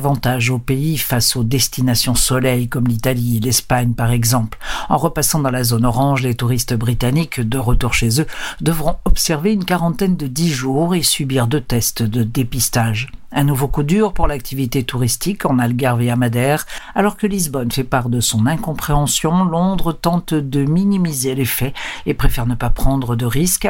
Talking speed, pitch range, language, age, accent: 175 wpm, 120-165 Hz, Portuguese, 60-79, French